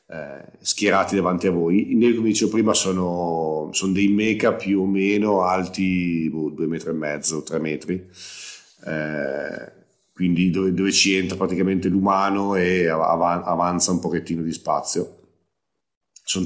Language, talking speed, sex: Italian, 145 wpm, male